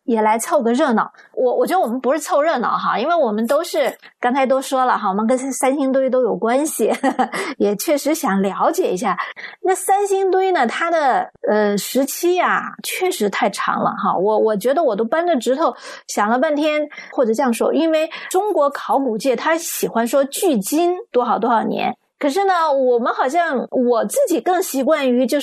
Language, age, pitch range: Chinese, 20-39, 250-355 Hz